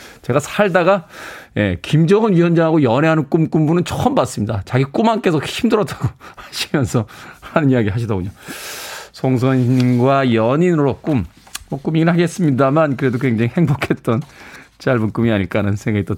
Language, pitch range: Korean, 115-165 Hz